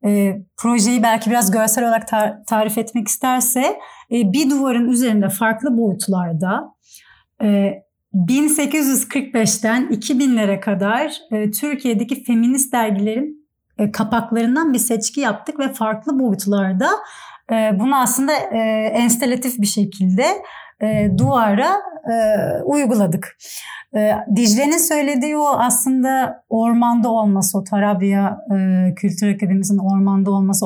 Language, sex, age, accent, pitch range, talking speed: Turkish, female, 30-49, native, 205-260 Hz, 95 wpm